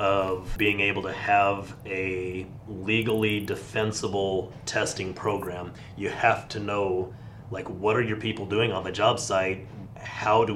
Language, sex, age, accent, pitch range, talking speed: English, male, 30-49, American, 100-115 Hz, 150 wpm